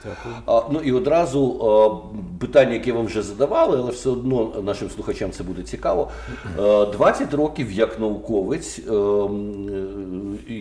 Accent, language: native, Ukrainian